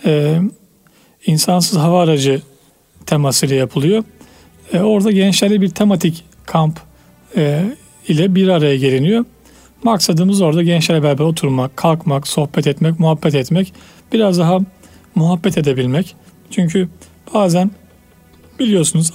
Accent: native